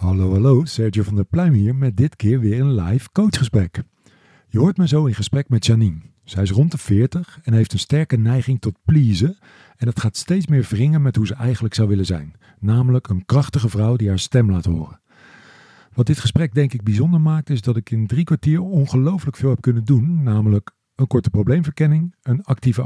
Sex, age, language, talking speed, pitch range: male, 50-69, Dutch, 210 wpm, 110-145 Hz